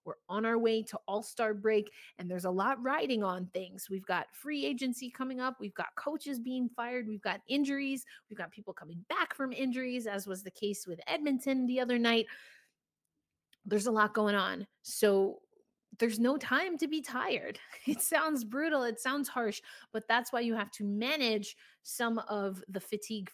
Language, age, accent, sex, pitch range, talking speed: English, 30-49, American, female, 195-270 Hz, 190 wpm